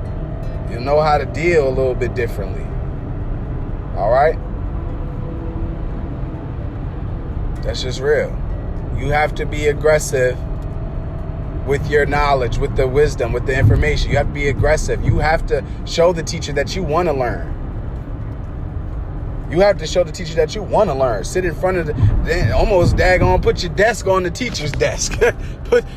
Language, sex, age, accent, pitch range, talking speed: English, male, 20-39, American, 130-205 Hz, 160 wpm